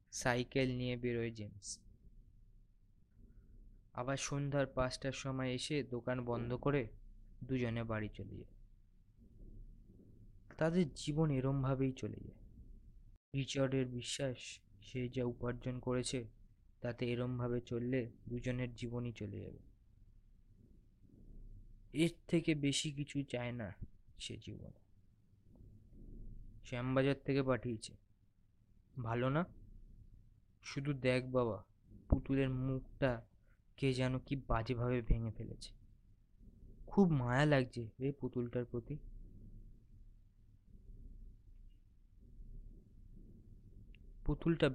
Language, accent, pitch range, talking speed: Bengali, native, 105-130 Hz, 85 wpm